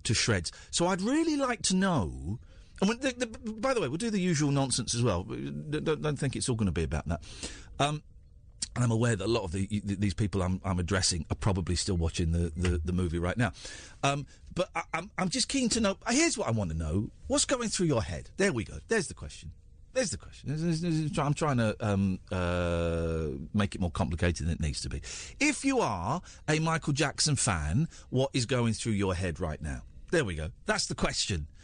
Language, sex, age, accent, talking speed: English, male, 50-69, British, 225 wpm